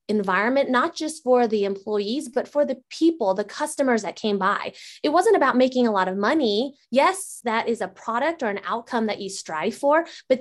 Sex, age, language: female, 20-39, English